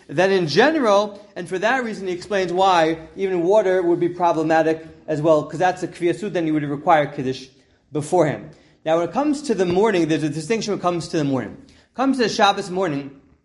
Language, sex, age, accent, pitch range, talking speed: English, male, 30-49, American, 155-205 Hz, 225 wpm